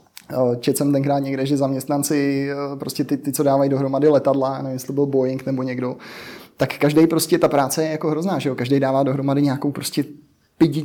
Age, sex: 20-39, male